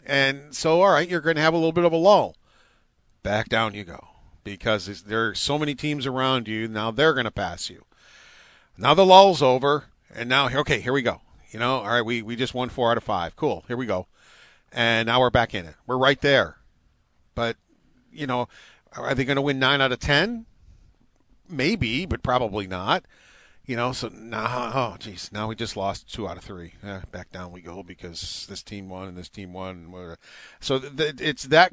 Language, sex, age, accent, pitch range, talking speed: English, male, 40-59, American, 105-140 Hz, 220 wpm